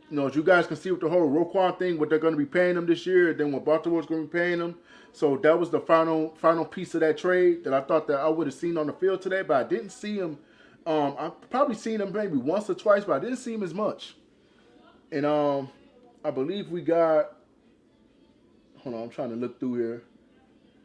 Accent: American